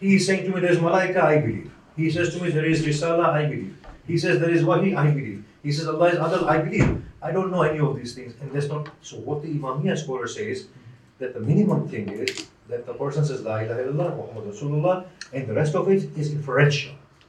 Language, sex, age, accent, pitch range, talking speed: English, male, 50-69, Indian, 135-175 Hz, 240 wpm